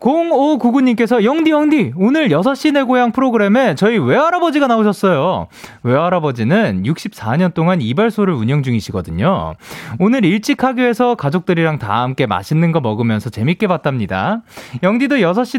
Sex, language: male, Korean